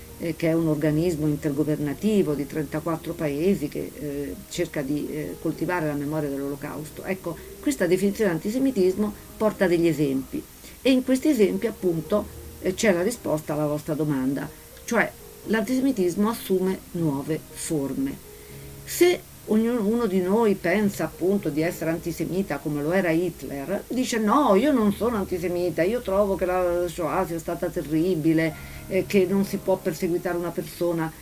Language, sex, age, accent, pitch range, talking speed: Italian, female, 50-69, native, 150-185 Hz, 150 wpm